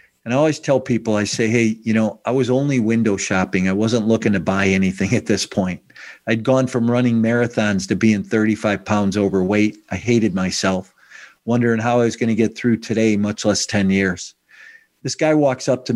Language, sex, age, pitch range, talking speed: English, male, 50-69, 105-125 Hz, 205 wpm